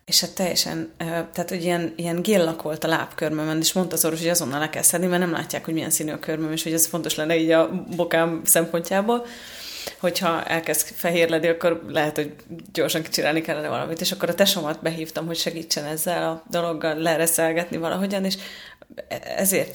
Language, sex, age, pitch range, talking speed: Hungarian, female, 30-49, 160-180 Hz, 180 wpm